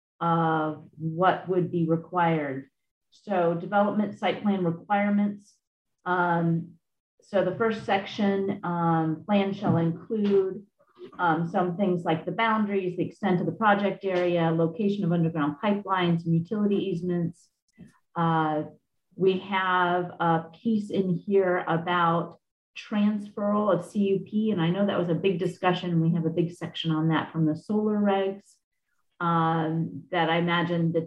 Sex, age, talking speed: female, 40-59, 145 wpm